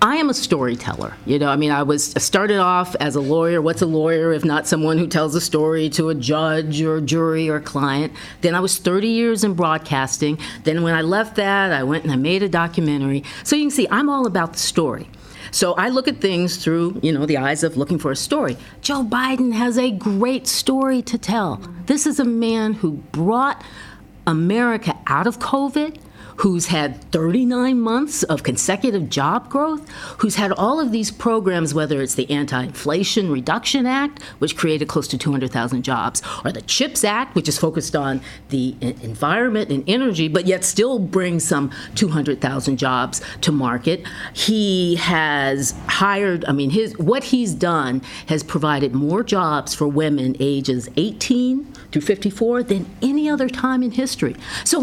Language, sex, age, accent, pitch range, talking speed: English, female, 50-69, American, 150-230 Hz, 180 wpm